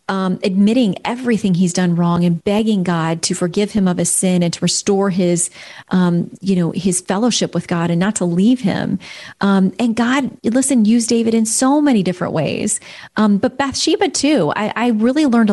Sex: female